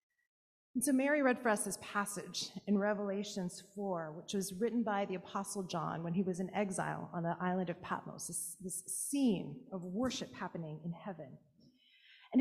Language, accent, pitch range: English, American, 185-235 Hz